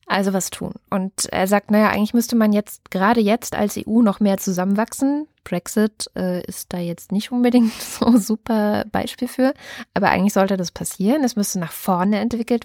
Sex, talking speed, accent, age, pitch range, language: female, 185 wpm, German, 20-39, 185-220 Hz, German